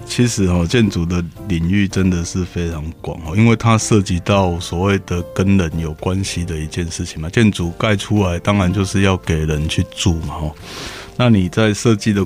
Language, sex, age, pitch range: Chinese, male, 20-39, 90-105 Hz